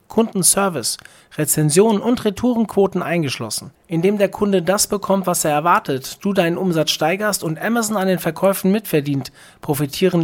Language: German